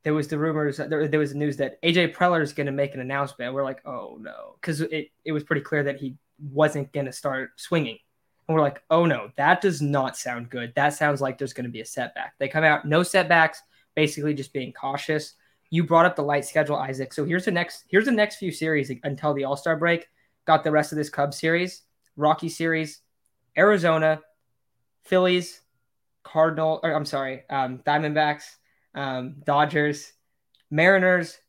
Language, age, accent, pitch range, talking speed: English, 10-29, American, 135-160 Hz, 200 wpm